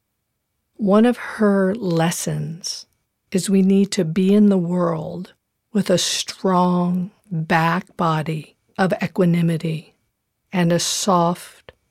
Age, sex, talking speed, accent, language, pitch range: 50-69, female, 110 wpm, American, English, 160-190 Hz